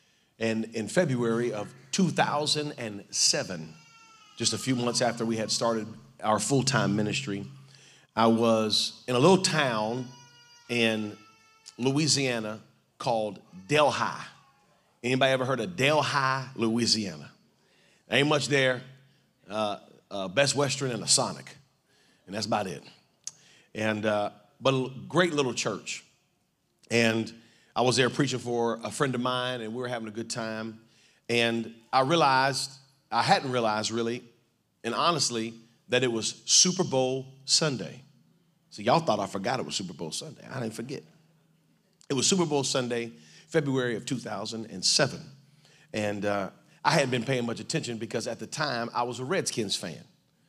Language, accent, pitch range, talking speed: English, American, 110-140 Hz, 145 wpm